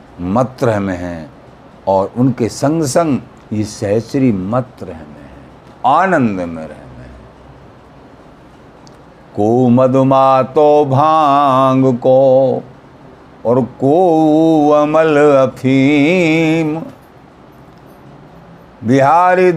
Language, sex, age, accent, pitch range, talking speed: Hindi, male, 50-69, native, 105-150 Hz, 85 wpm